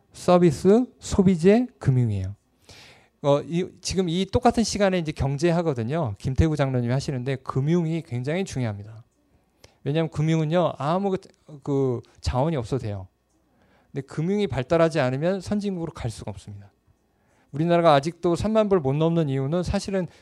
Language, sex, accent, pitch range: Korean, male, native, 125-180 Hz